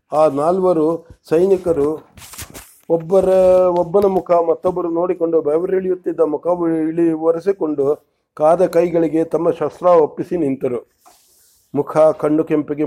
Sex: male